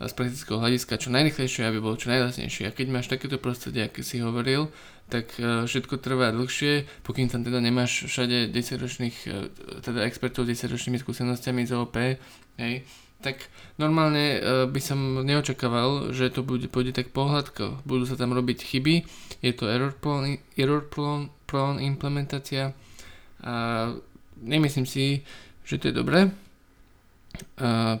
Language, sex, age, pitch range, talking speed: Slovak, male, 20-39, 115-135 Hz, 145 wpm